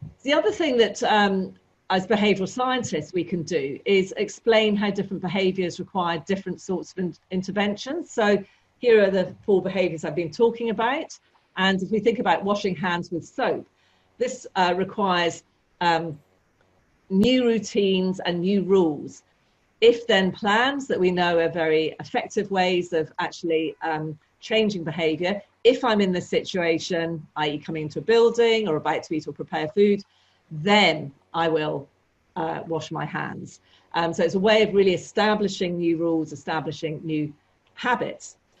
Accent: British